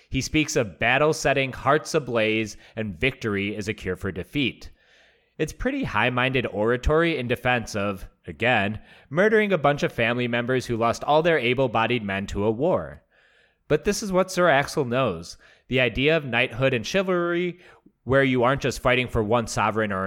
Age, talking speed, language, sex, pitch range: 30-49, 175 wpm, English, male, 105-145 Hz